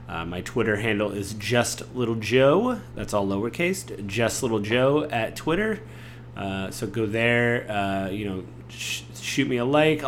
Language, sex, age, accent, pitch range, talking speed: English, male, 30-49, American, 100-125 Hz, 165 wpm